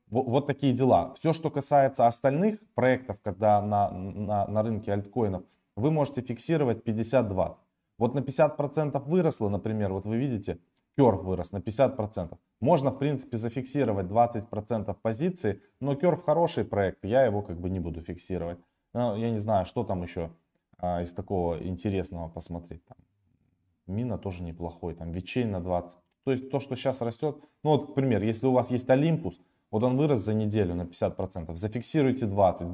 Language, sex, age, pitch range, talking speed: Russian, male, 20-39, 95-130 Hz, 170 wpm